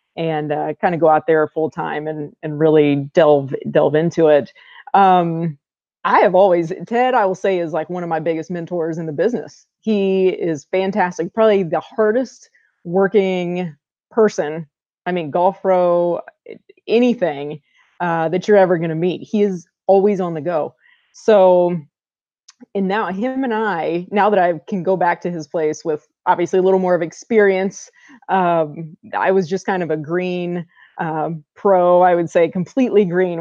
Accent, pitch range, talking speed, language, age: American, 160-195 Hz, 170 wpm, English, 20-39